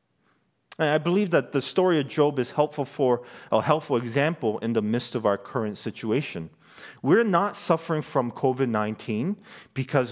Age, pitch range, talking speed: 40-59, 105-145 Hz, 160 wpm